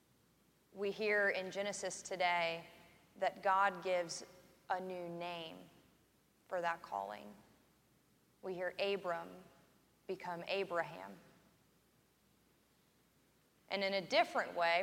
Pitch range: 175-200 Hz